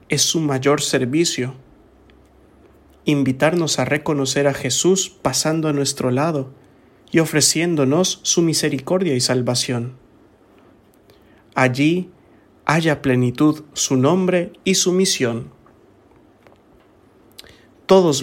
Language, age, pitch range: English, 50-69, 130-150 Hz